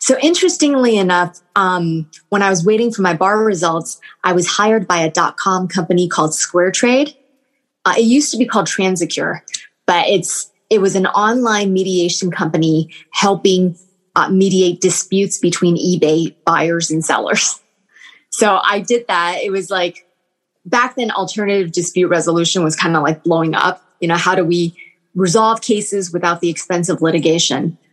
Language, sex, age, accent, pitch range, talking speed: English, female, 20-39, American, 175-210 Hz, 165 wpm